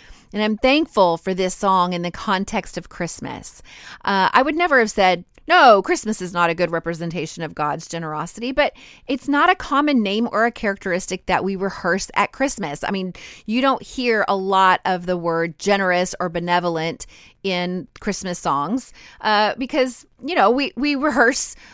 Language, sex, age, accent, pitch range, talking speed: English, female, 30-49, American, 180-230 Hz, 175 wpm